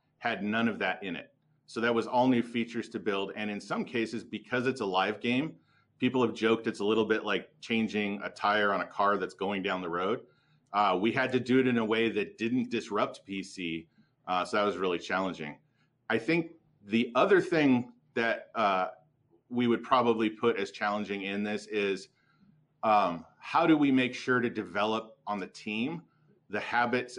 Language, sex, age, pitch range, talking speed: English, male, 40-59, 105-125 Hz, 200 wpm